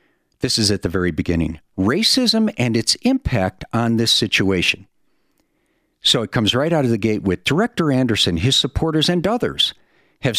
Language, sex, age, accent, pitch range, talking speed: English, male, 50-69, American, 105-140 Hz, 170 wpm